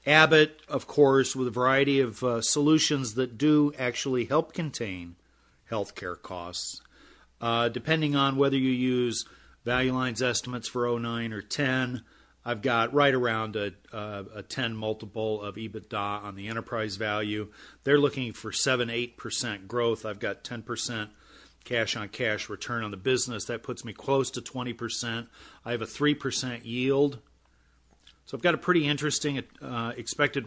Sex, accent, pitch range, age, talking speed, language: male, American, 110-135 Hz, 40-59, 155 wpm, English